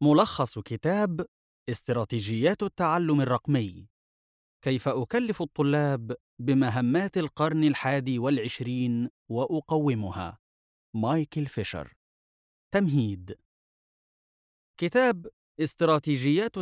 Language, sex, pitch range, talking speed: Arabic, male, 125-170 Hz, 65 wpm